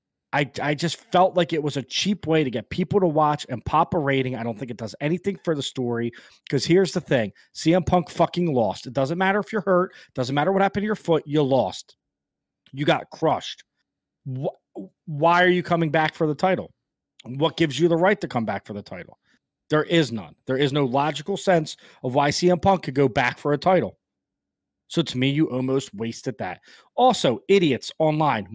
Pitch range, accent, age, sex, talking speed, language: 135-190 Hz, American, 30-49, male, 215 wpm, English